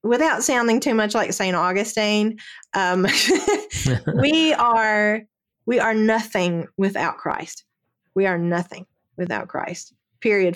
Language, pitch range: English, 185-220 Hz